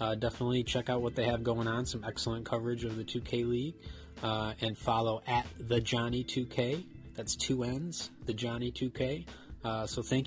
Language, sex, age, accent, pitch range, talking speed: English, male, 30-49, American, 110-120 Hz, 205 wpm